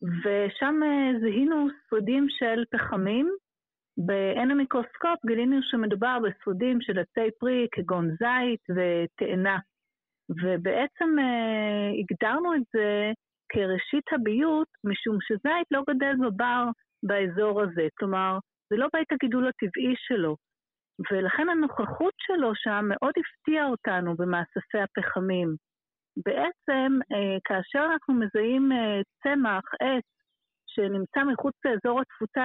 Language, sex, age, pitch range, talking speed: Hebrew, female, 50-69, 200-270 Hz, 105 wpm